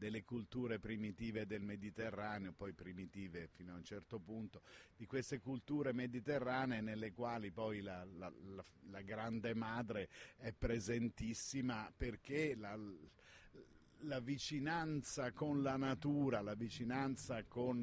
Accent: native